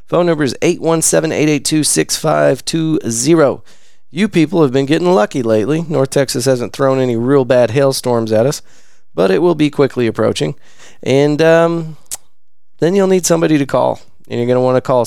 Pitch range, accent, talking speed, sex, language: 110-140 Hz, American, 165 wpm, male, English